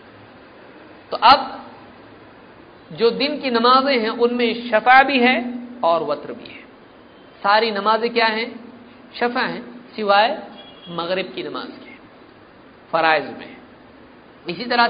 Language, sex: Hindi, male